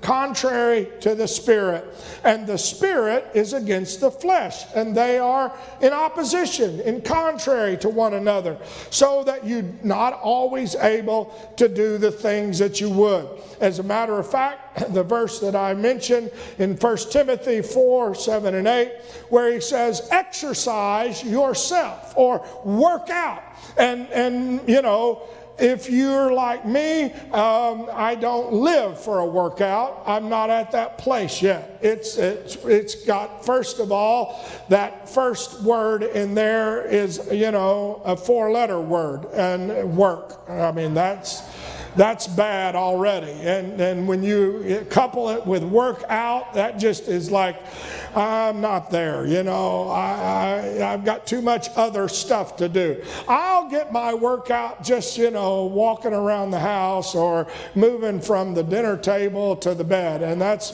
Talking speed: 155 wpm